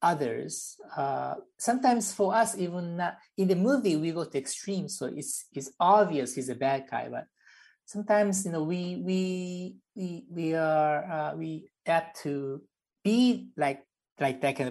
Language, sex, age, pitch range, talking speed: English, male, 50-69, 140-185 Hz, 165 wpm